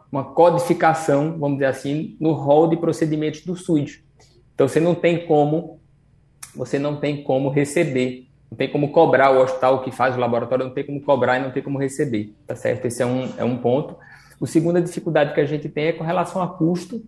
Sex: male